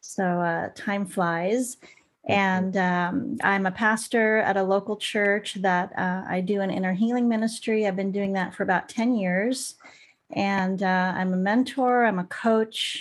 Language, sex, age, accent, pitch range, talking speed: English, female, 30-49, American, 185-215 Hz, 170 wpm